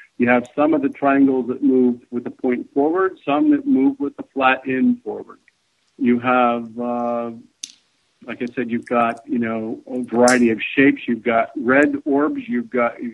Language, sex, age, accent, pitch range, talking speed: English, male, 50-69, American, 120-150 Hz, 185 wpm